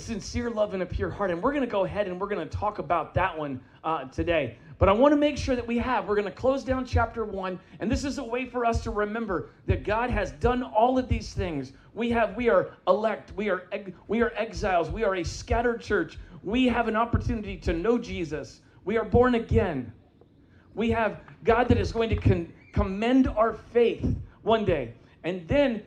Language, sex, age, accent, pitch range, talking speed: English, male, 40-59, American, 180-235 Hz, 220 wpm